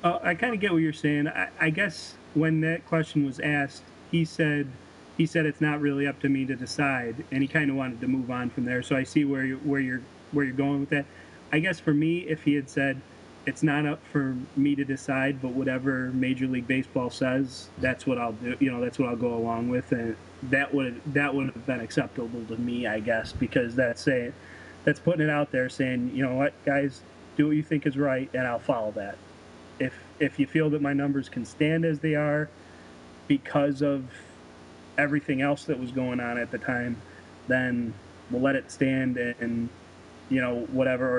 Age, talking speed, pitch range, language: 30-49, 220 wpm, 120-145 Hz, English